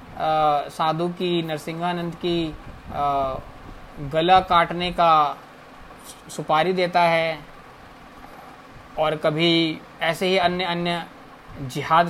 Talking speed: 90 wpm